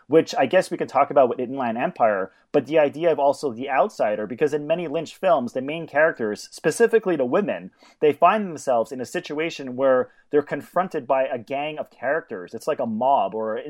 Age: 30-49